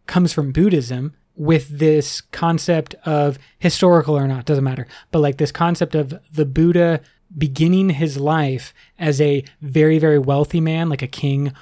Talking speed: 160 wpm